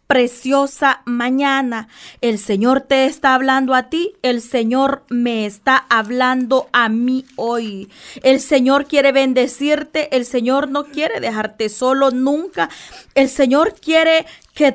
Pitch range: 245-295 Hz